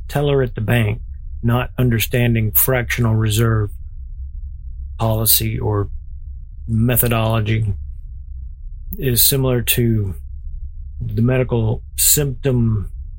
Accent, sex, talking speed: American, male, 75 wpm